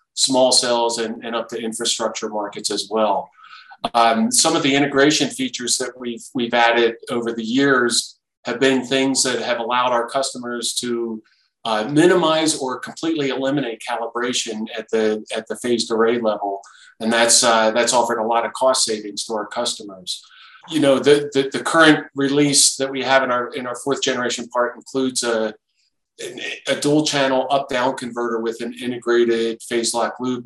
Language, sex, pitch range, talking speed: English, male, 110-130 Hz, 175 wpm